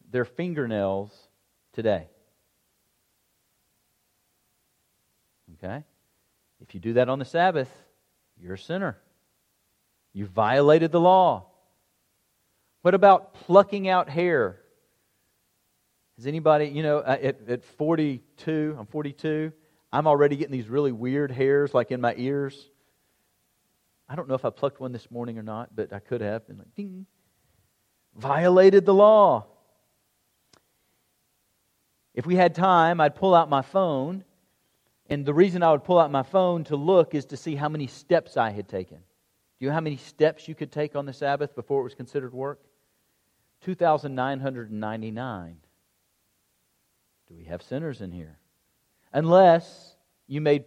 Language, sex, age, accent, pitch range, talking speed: English, male, 40-59, American, 115-155 Hz, 140 wpm